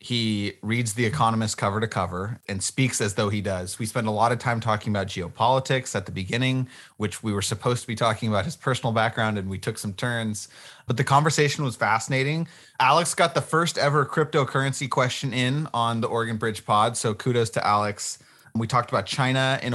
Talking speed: 205 wpm